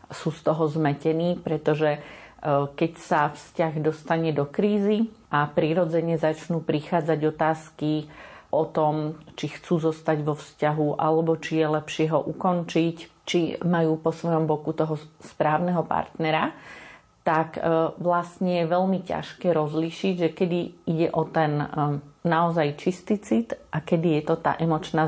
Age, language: 40-59, Slovak